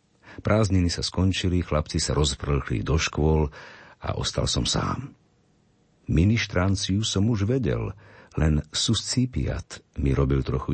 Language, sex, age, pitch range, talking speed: Slovak, male, 50-69, 75-100 Hz, 115 wpm